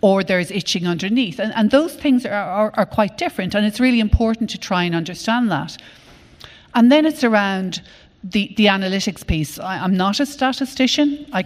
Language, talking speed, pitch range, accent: English, 190 wpm, 175-220 Hz, Irish